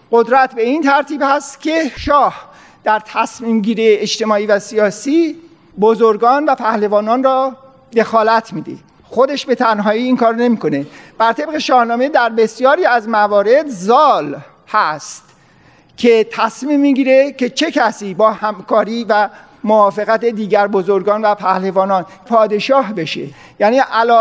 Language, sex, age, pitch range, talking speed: Persian, male, 50-69, 210-265 Hz, 130 wpm